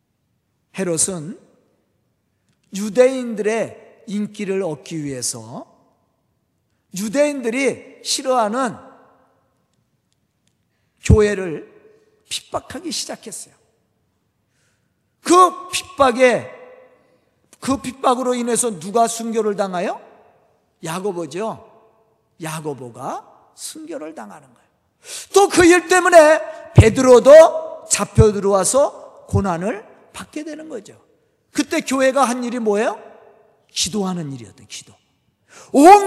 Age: 40-59